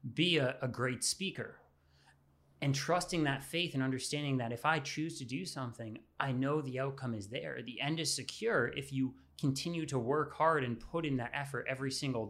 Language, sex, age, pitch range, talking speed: English, male, 30-49, 120-150 Hz, 200 wpm